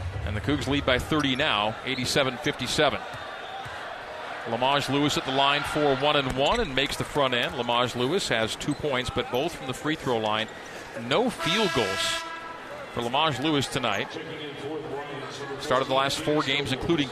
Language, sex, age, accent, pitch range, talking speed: English, male, 40-59, American, 130-155 Hz, 160 wpm